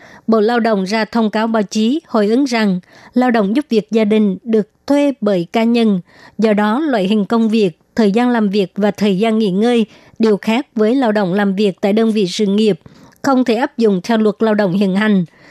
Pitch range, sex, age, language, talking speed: 205-230 Hz, male, 60-79, Vietnamese, 230 wpm